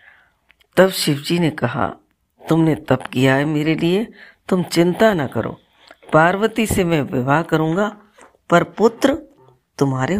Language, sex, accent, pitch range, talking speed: Hindi, female, native, 140-185 Hz, 130 wpm